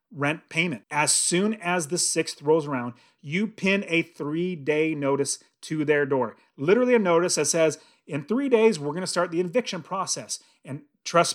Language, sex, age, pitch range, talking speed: English, male, 30-49, 145-210 Hz, 180 wpm